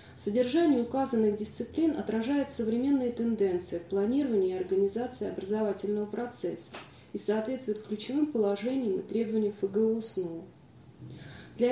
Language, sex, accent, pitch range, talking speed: Russian, female, native, 210-260 Hz, 110 wpm